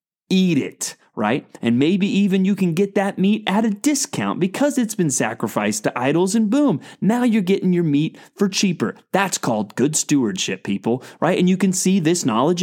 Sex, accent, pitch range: male, American, 130-200 Hz